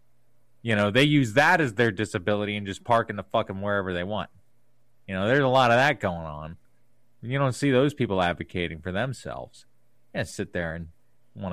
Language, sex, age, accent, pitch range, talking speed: English, male, 40-59, American, 95-135 Hz, 205 wpm